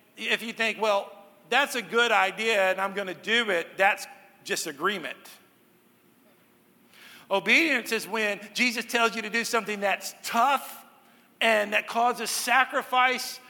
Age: 50-69